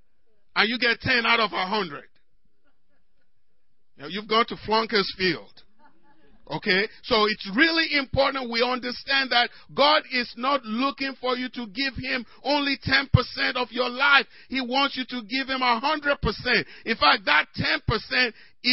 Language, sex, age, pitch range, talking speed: English, male, 50-69, 240-290 Hz, 145 wpm